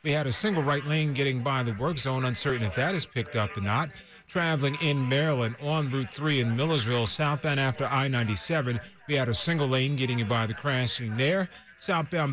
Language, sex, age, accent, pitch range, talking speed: English, male, 40-59, American, 120-155 Hz, 205 wpm